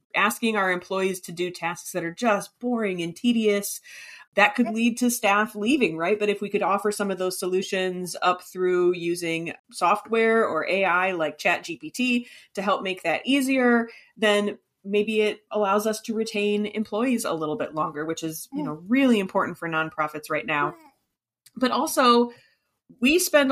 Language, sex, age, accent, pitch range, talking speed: English, female, 30-49, American, 180-220 Hz, 170 wpm